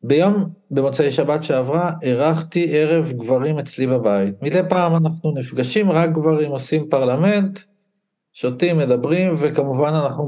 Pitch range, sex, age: 130-180 Hz, male, 50-69